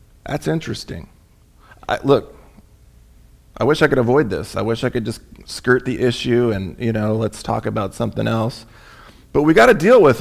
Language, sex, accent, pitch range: English, male, American, 115-165 Hz